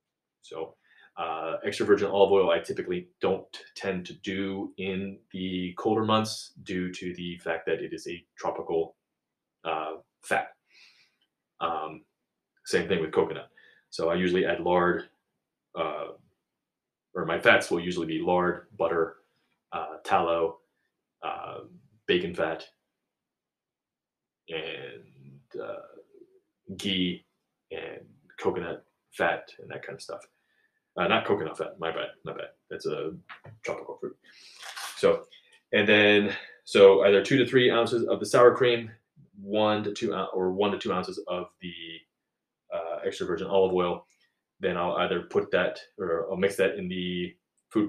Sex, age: male, 30-49